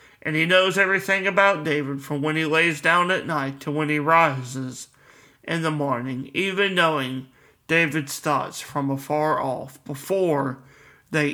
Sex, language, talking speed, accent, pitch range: male, English, 155 wpm, American, 135-170 Hz